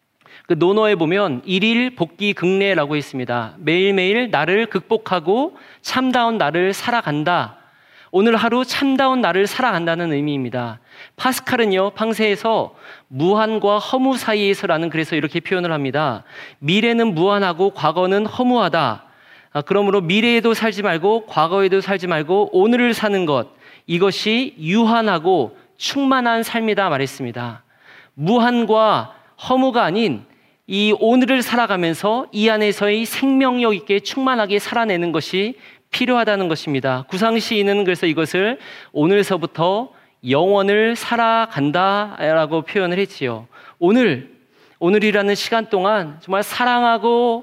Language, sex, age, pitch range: Korean, male, 40-59, 170-225 Hz